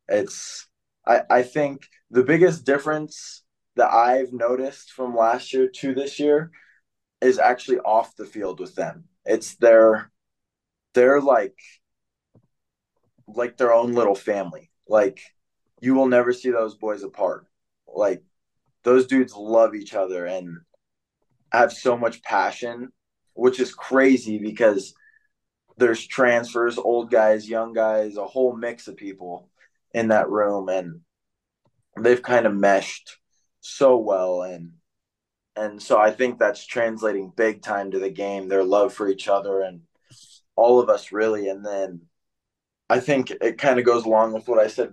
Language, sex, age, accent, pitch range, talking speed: English, male, 20-39, American, 100-125 Hz, 150 wpm